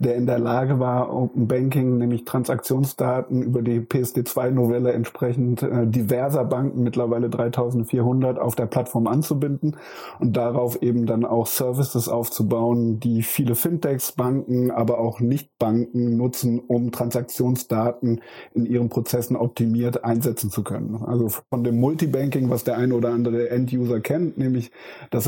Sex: male